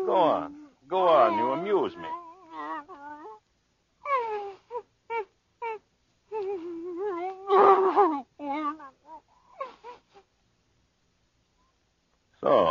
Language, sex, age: English, male, 60-79